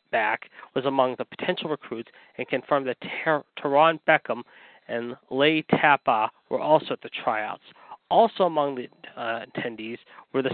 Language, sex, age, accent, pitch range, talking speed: English, male, 40-59, American, 125-170 Hz, 155 wpm